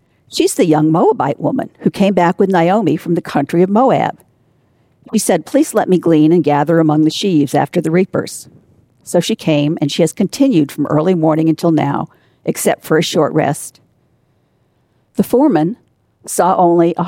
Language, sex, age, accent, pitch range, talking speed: English, female, 50-69, American, 150-195 Hz, 180 wpm